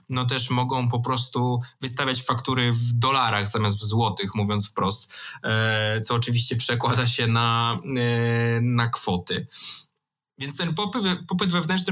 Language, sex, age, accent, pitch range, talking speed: Polish, male, 20-39, native, 120-150 Hz, 140 wpm